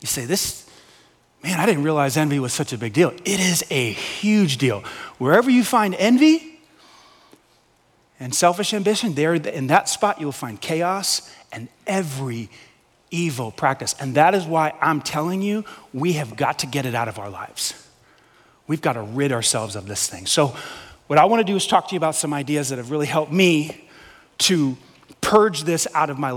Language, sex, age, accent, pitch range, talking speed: English, male, 30-49, American, 140-210 Hz, 195 wpm